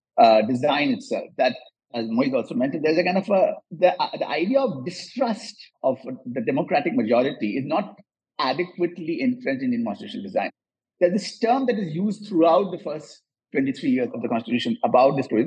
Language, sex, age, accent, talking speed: English, male, 50-69, Indian, 190 wpm